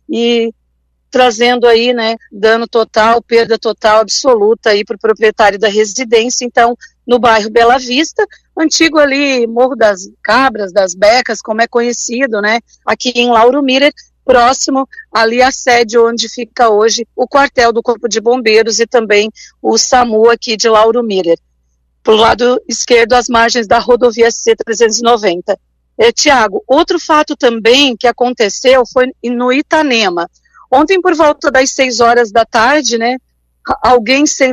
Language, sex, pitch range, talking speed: Portuguese, female, 230-285 Hz, 145 wpm